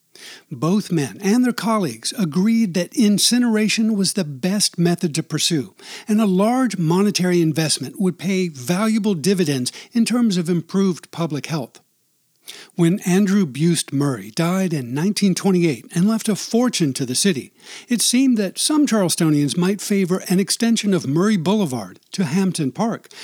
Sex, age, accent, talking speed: male, 60-79, American, 150 wpm